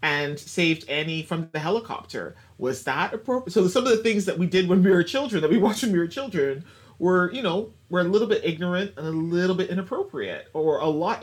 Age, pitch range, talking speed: 30-49, 130-180 Hz, 235 wpm